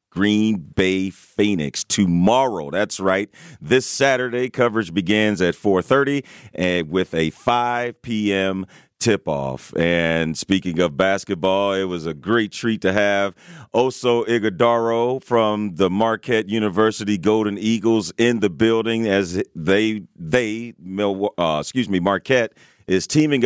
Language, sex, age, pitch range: English, male, 40-59, 95-120 Hz